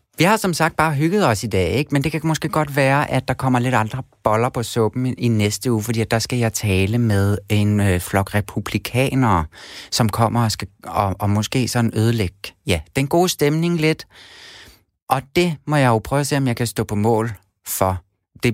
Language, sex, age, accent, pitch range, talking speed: Danish, male, 30-49, native, 100-135 Hz, 220 wpm